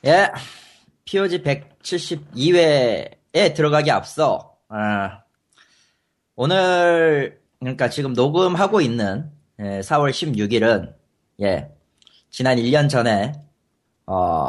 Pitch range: 105-150 Hz